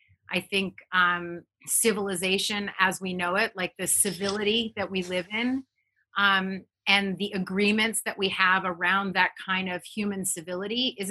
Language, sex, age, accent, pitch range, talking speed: English, female, 30-49, American, 190-220 Hz, 155 wpm